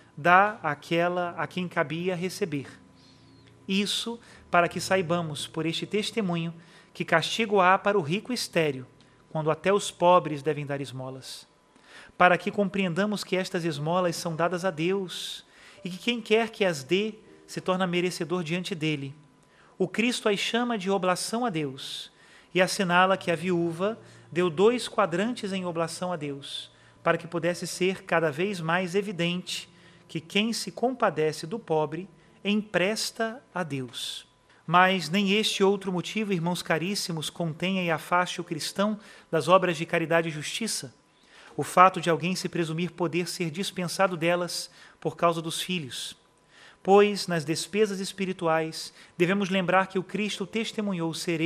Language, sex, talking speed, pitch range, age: Portuguese, male, 150 wpm, 165-195 Hz, 30-49